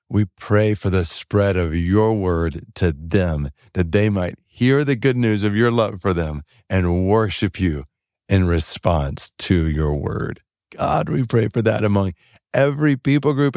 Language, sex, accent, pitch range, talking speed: English, male, American, 80-105 Hz, 170 wpm